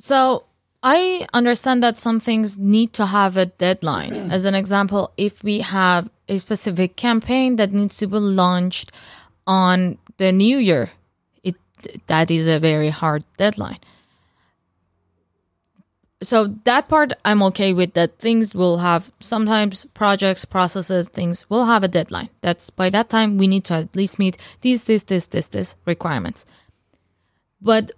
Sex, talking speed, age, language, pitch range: female, 150 wpm, 20-39, English, 180-220 Hz